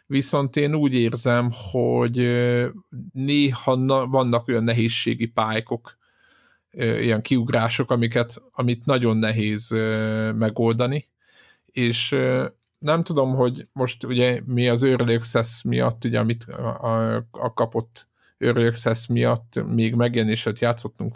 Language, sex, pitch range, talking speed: Hungarian, male, 110-125 Hz, 100 wpm